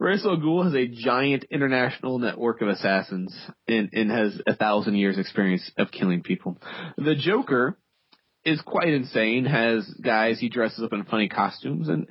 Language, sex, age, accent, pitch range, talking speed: English, male, 30-49, American, 105-155 Hz, 160 wpm